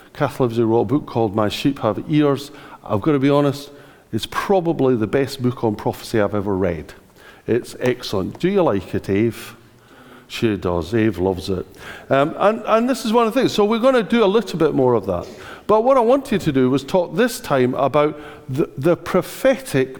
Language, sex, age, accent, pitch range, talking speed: English, male, 50-69, British, 125-185 Hz, 210 wpm